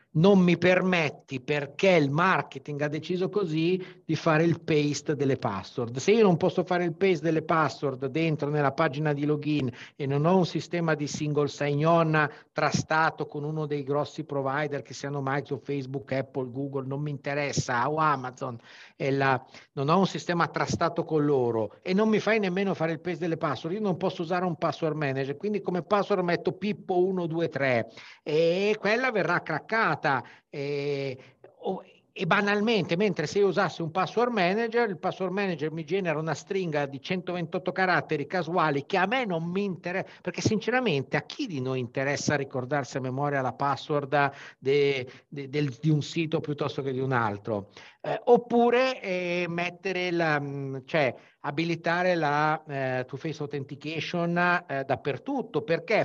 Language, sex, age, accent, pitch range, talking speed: Italian, male, 50-69, native, 140-180 Hz, 160 wpm